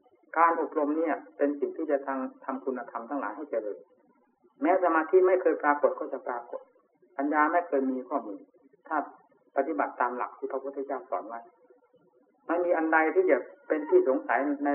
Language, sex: Thai, male